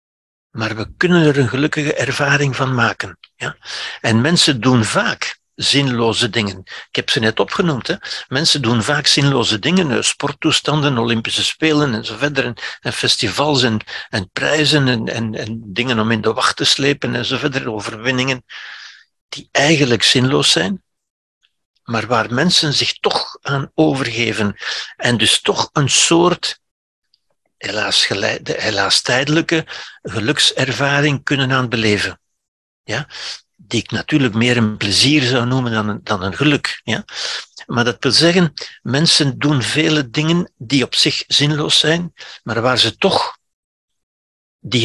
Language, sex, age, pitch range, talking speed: Dutch, male, 60-79, 115-150 Hz, 145 wpm